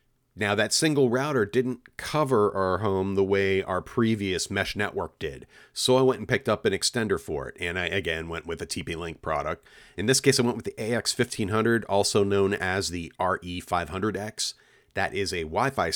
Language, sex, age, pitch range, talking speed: English, male, 40-59, 85-120 Hz, 190 wpm